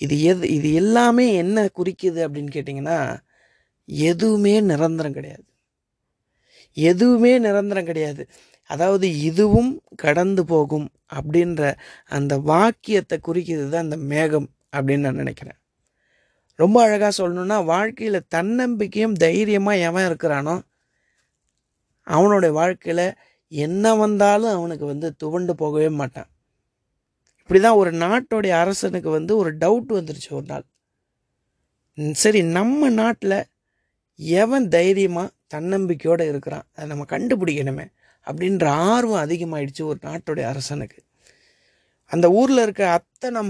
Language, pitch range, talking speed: Tamil, 155-205 Hz, 105 wpm